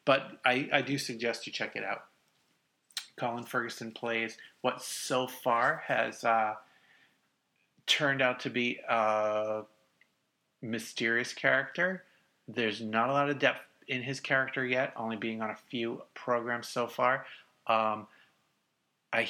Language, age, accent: English, 30-49, American